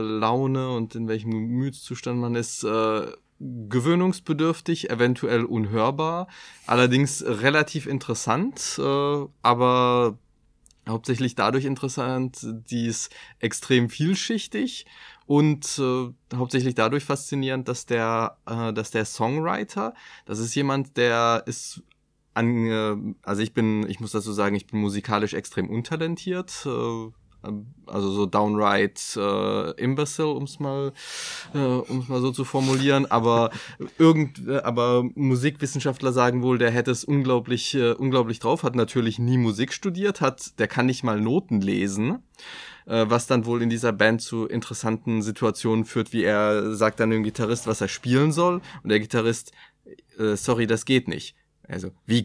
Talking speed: 145 wpm